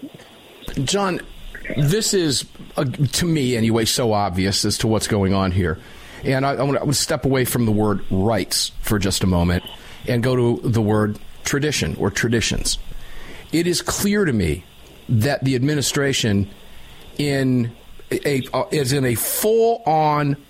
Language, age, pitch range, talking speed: English, 50-69, 110-155 Hz, 155 wpm